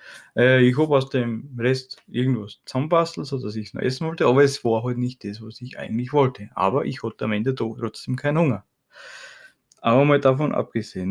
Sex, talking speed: male, 200 wpm